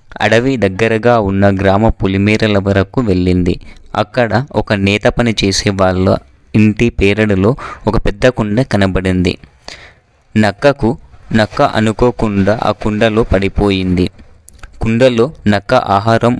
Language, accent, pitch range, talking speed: Telugu, native, 95-115 Hz, 100 wpm